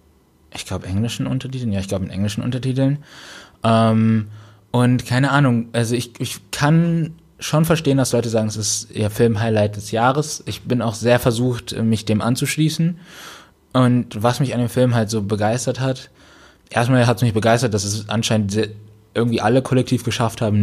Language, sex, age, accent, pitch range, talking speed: German, male, 20-39, German, 105-125 Hz, 170 wpm